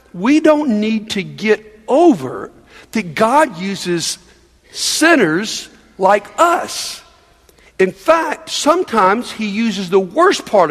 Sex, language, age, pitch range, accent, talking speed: male, English, 60-79, 180-265 Hz, American, 110 wpm